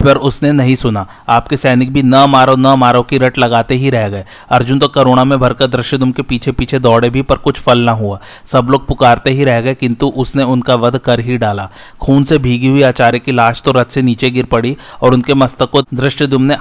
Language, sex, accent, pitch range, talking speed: Hindi, male, native, 120-135 Hz, 110 wpm